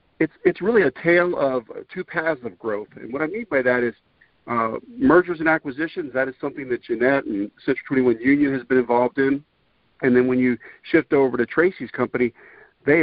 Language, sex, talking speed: English, male, 205 wpm